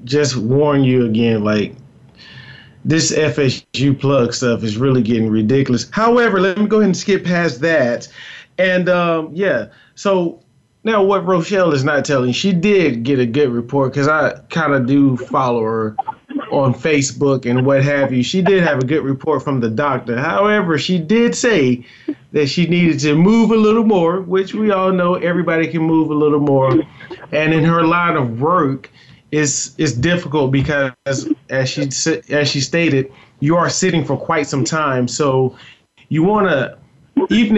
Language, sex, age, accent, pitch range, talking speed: English, male, 30-49, American, 135-175 Hz, 170 wpm